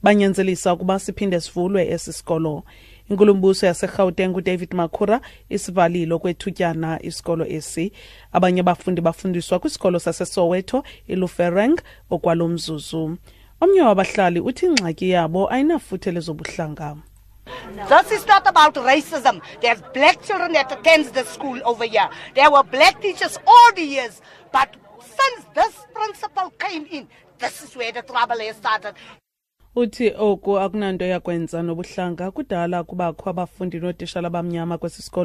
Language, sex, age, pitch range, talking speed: English, female, 30-49, 170-235 Hz, 140 wpm